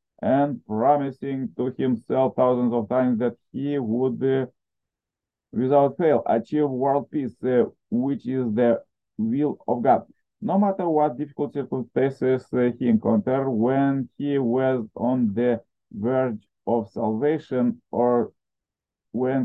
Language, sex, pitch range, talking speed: English, male, 120-150 Hz, 125 wpm